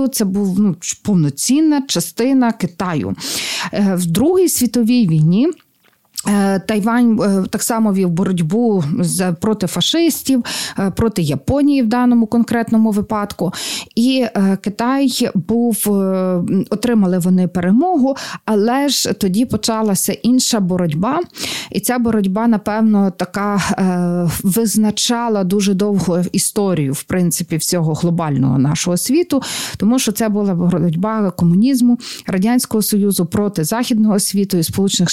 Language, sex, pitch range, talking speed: Ukrainian, female, 185-235 Hz, 110 wpm